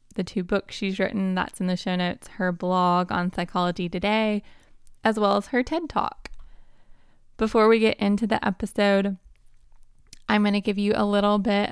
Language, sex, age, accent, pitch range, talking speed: English, female, 20-39, American, 190-220 Hz, 180 wpm